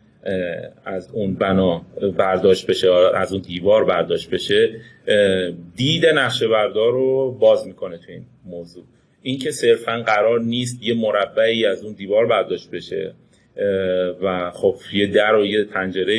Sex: male